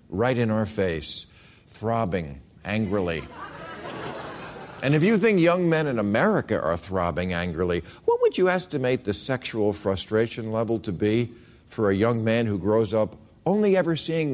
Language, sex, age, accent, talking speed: English, male, 50-69, American, 155 wpm